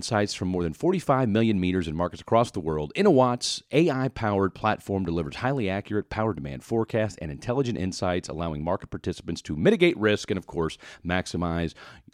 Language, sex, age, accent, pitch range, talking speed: English, male, 40-59, American, 85-110 Hz, 170 wpm